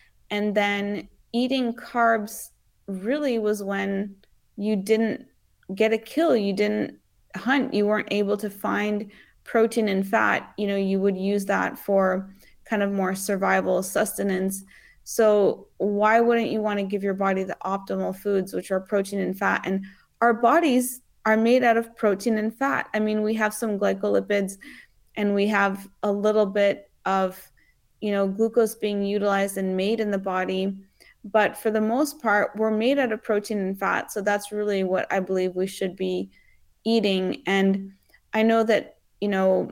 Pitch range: 195-220 Hz